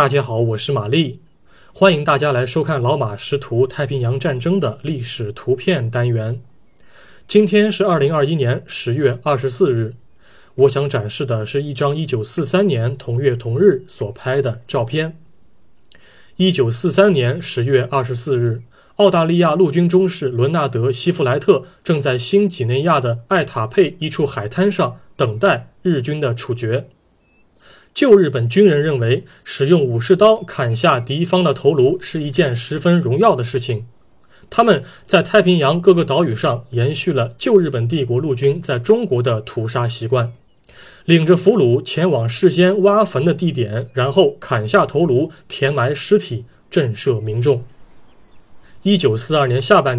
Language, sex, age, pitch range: Chinese, male, 20-39, 125-175 Hz